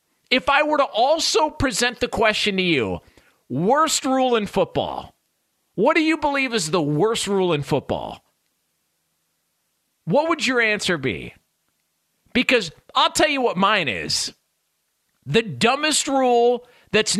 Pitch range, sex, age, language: 210-280 Hz, male, 40-59, English